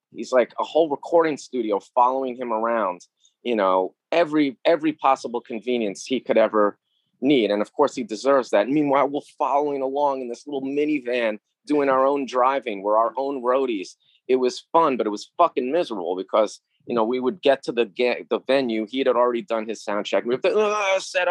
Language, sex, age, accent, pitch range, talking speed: English, male, 30-49, American, 120-145 Hz, 200 wpm